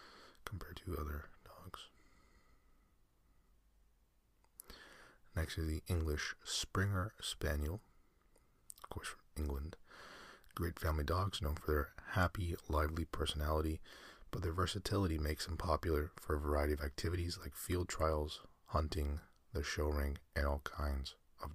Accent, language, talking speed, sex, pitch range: American, English, 125 wpm, male, 75-90 Hz